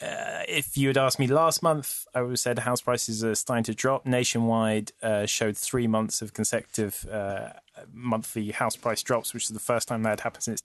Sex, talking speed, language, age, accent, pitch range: male, 215 wpm, English, 20-39, British, 110-125 Hz